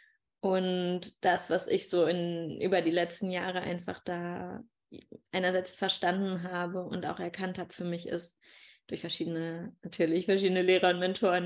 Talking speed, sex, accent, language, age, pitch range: 145 wpm, female, German, German, 20-39, 160-180 Hz